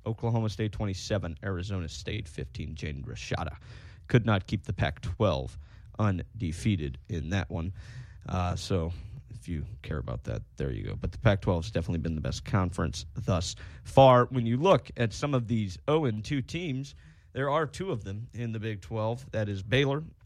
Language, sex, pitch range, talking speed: English, male, 95-125 Hz, 175 wpm